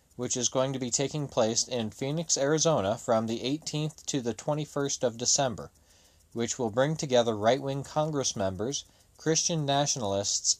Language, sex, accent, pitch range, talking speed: English, male, American, 100-130 Hz, 155 wpm